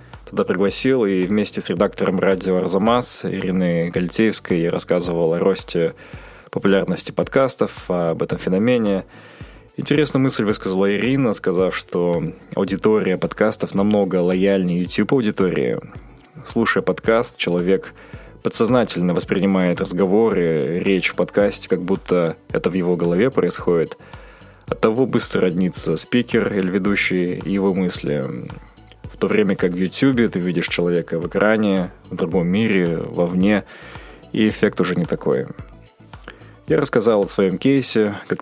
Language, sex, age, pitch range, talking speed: Russian, male, 20-39, 90-110 Hz, 130 wpm